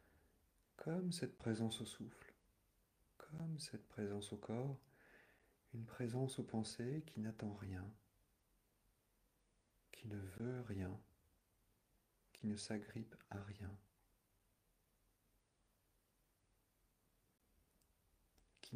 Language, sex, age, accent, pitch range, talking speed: French, male, 50-69, French, 95-110 Hz, 85 wpm